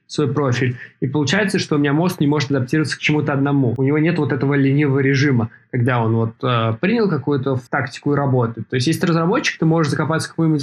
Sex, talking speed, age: male, 225 wpm, 20-39